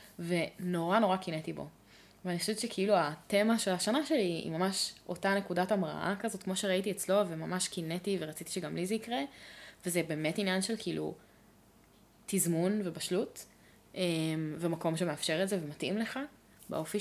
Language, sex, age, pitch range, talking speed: Hebrew, female, 20-39, 170-220 Hz, 145 wpm